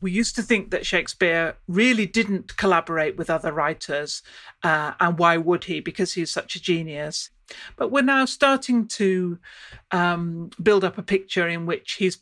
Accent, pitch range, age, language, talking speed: British, 165-195 Hz, 40-59, English, 170 wpm